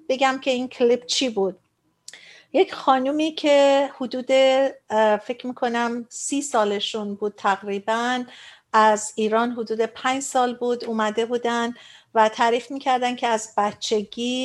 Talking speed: 125 wpm